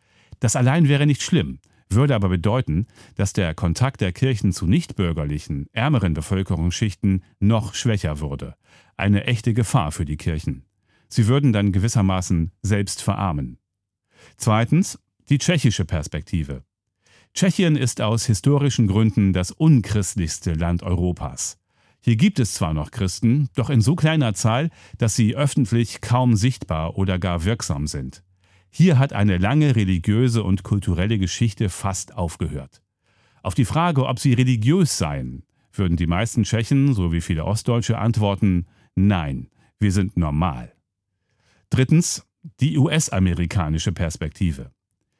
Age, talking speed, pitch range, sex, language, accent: 40-59, 130 wpm, 90-125 Hz, male, German, German